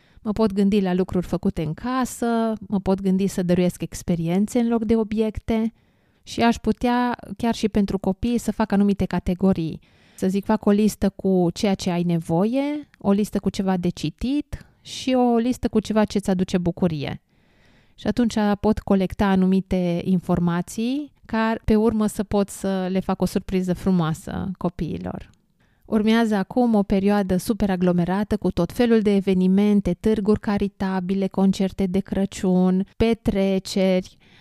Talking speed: 155 wpm